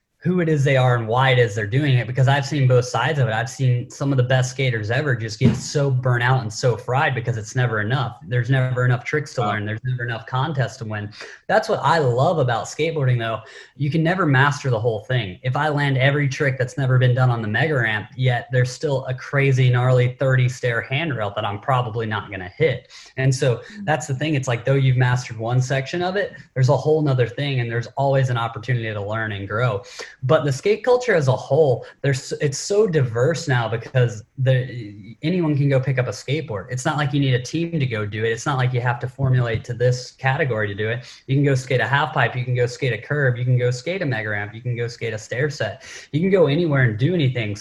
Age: 20-39